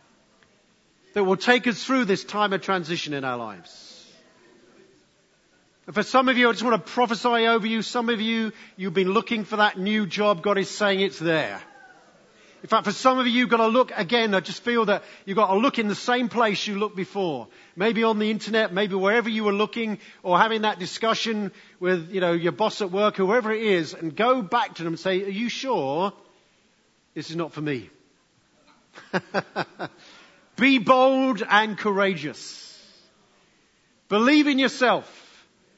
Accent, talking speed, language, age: British, 185 wpm, English, 50-69